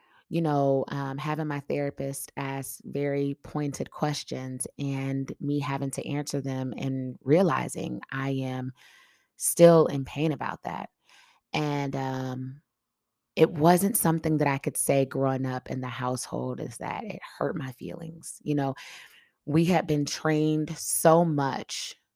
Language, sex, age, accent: English, female, 20-39, American